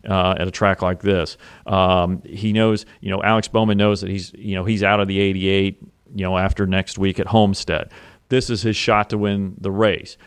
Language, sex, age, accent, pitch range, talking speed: English, male, 40-59, American, 100-115 Hz, 220 wpm